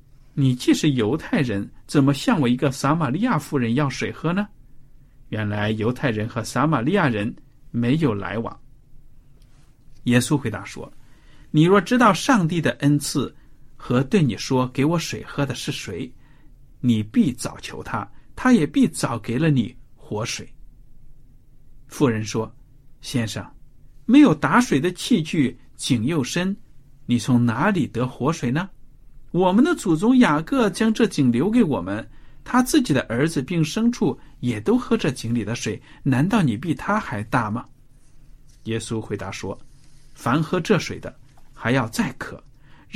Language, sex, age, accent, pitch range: Chinese, male, 50-69, native, 120-155 Hz